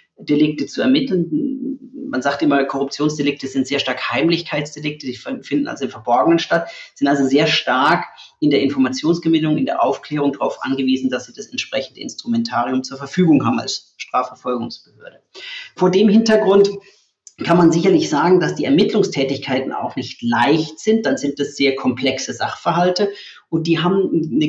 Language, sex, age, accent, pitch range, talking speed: German, male, 30-49, German, 140-200 Hz, 155 wpm